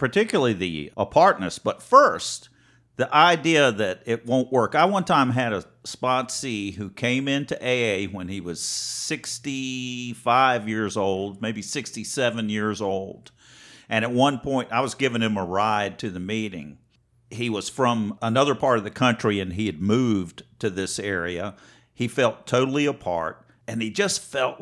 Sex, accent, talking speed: male, American, 165 wpm